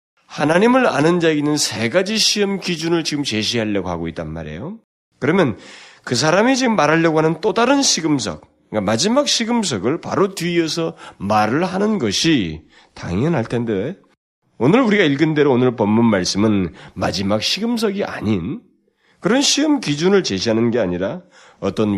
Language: Korean